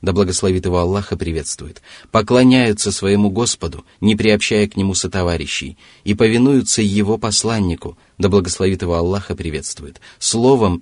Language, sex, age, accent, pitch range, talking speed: Russian, male, 30-49, native, 90-110 Hz, 115 wpm